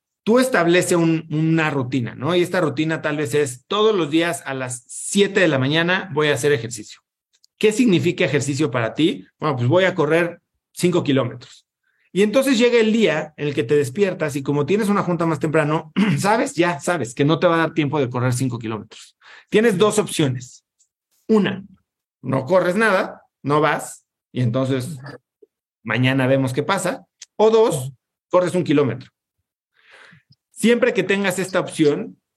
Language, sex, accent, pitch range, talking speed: Spanish, male, Mexican, 140-185 Hz, 170 wpm